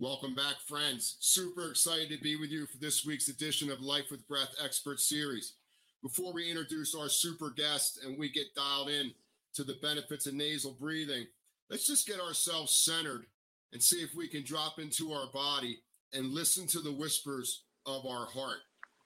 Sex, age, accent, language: male, 40-59, American, English